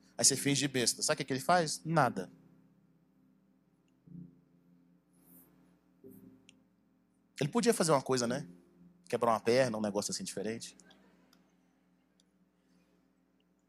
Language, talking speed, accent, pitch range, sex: Portuguese, 105 wpm, Brazilian, 95-145 Hz, male